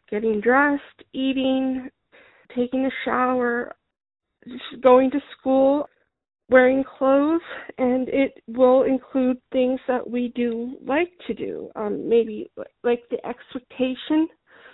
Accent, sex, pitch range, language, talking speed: American, female, 235-275 Hz, English, 115 wpm